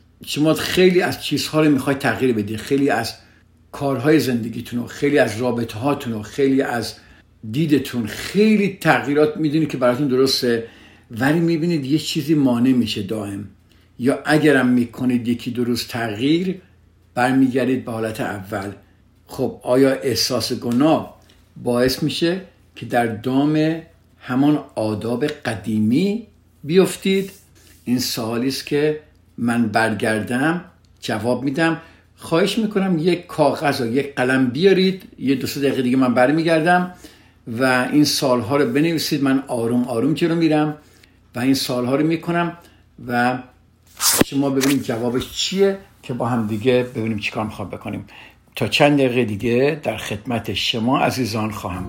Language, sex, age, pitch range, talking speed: Persian, male, 60-79, 115-150 Hz, 135 wpm